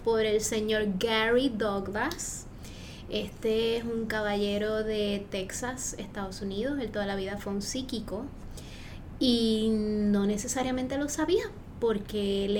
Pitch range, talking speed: 220-265 Hz, 130 wpm